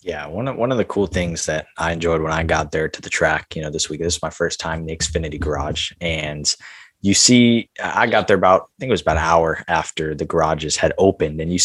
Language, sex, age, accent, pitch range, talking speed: English, male, 20-39, American, 80-100 Hz, 270 wpm